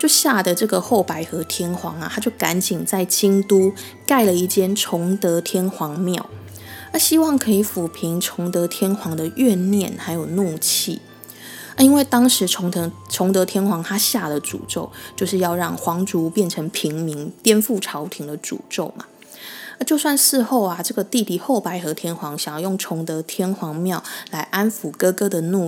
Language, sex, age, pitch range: Chinese, female, 20-39, 170-220 Hz